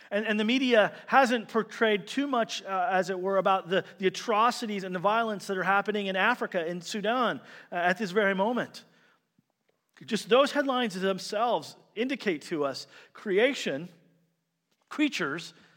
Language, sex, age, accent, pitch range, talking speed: English, male, 40-59, American, 180-225 Hz, 150 wpm